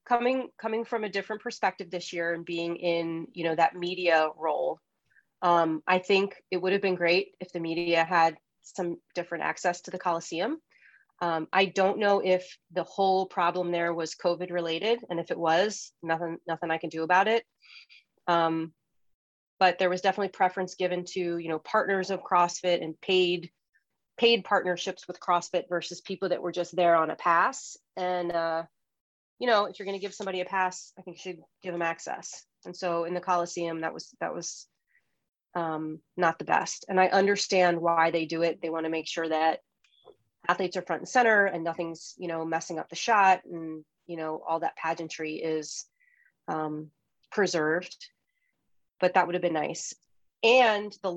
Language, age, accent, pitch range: English, 30-49, American, 165-185 Hz